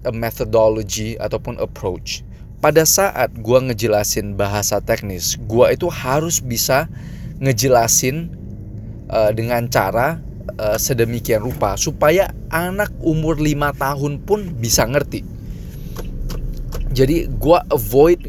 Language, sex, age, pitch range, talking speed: Indonesian, male, 20-39, 115-160 Hz, 105 wpm